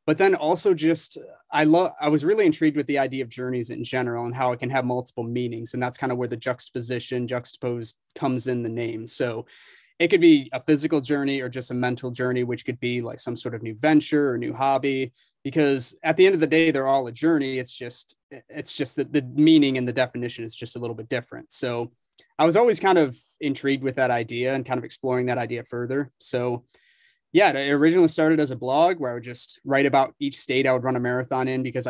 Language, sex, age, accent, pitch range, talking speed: English, male, 30-49, American, 120-140 Hz, 240 wpm